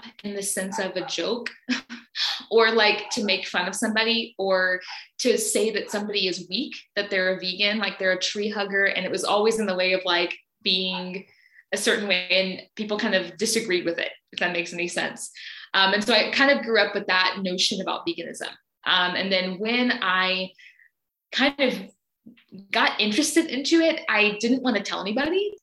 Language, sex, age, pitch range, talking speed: English, female, 20-39, 190-250 Hz, 195 wpm